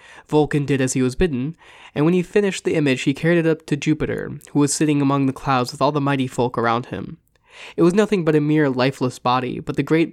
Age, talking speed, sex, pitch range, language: 20-39, 250 wpm, male, 130-165 Hz, English